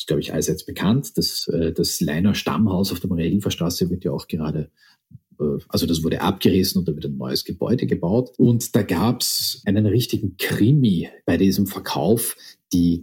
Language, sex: German, male